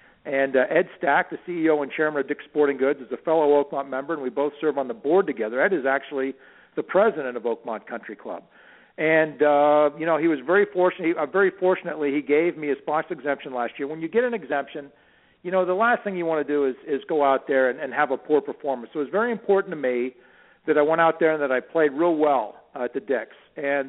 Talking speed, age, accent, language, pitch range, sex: 255 wpm, 50-69, American, English, 140-180 Hz, male